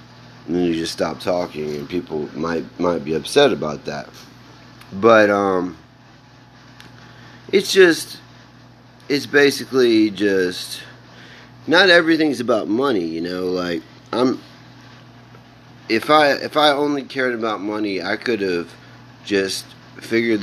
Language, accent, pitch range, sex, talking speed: English, American, 85-115 Hz, male, 125 wpm